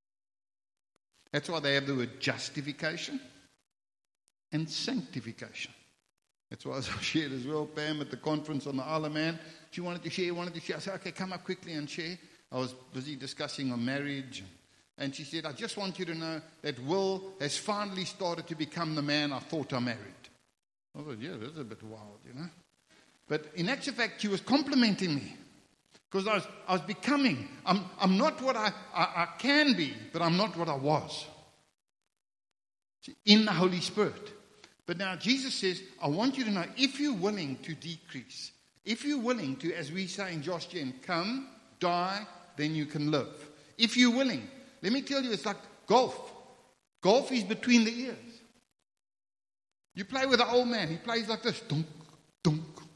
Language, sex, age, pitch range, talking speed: English, male, 60-79, 150-215 Hz, 190 wpm